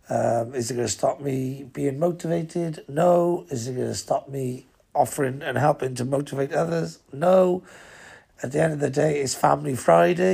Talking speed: 185 wpm